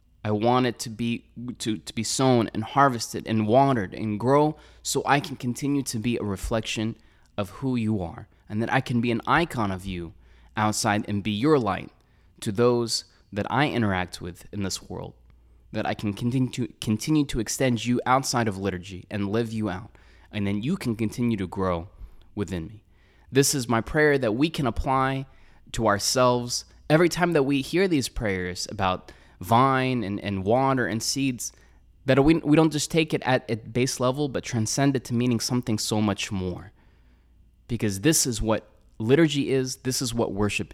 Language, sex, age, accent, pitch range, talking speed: English, male, 20-39, American, 95-125 Hz, 190 wpm